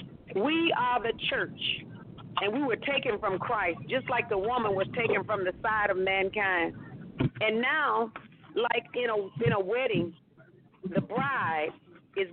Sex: female